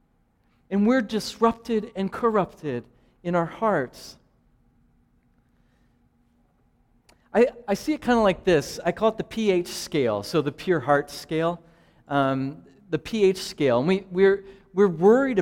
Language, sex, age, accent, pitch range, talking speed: English, male, 40-59, American, 155-205 Hz, 140 wpm